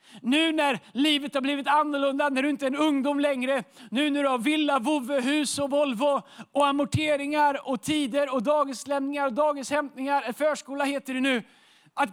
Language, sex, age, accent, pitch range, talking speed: Swedish, male, 30-49, native, 260-300 Hz, 180 wpm